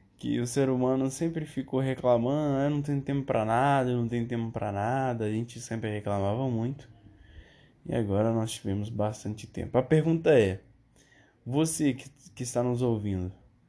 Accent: Brazilian